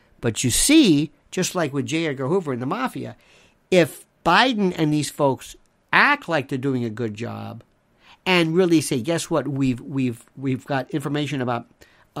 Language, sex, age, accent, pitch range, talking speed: English, male, 50-69, American, 140-205 Hz, 175 wpm